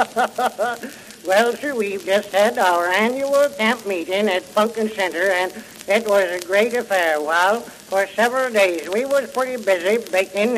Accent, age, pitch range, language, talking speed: American, 60-79, 190-240 Hz, English, 155 wpm